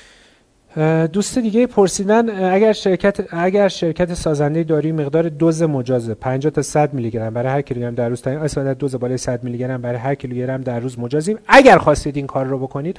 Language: Persian